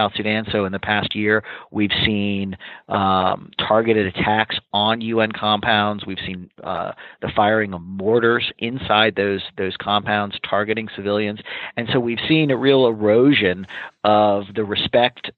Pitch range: 105-120 Hz